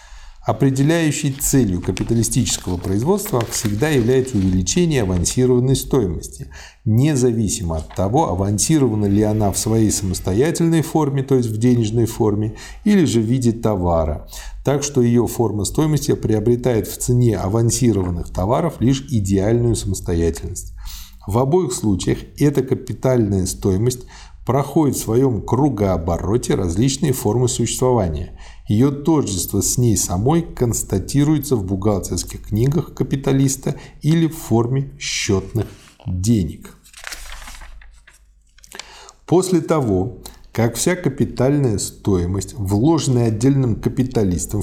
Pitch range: 95-135 Hz